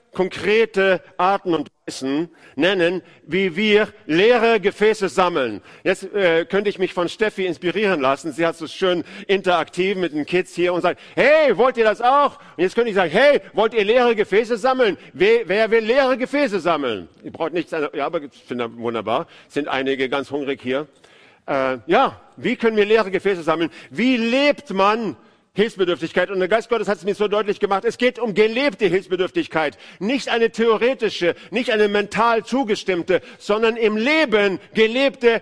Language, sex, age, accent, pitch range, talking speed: German, male, 50-69, German, 165-225 Hz, 175 wpm